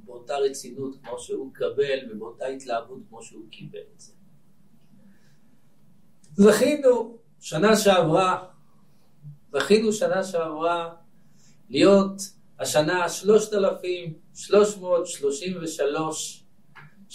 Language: English